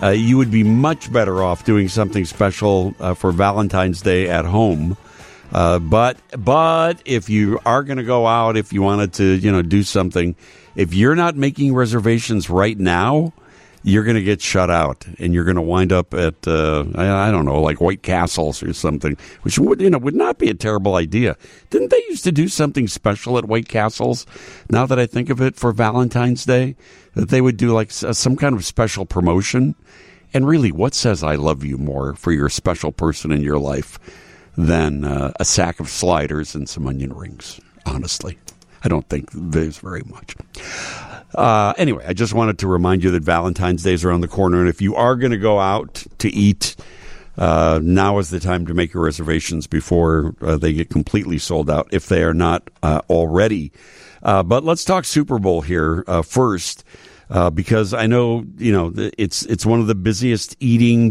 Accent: American